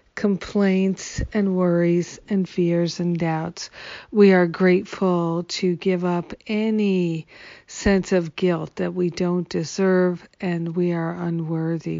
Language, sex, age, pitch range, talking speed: English, female, 50-69, 170-190 Hz, 125 wpm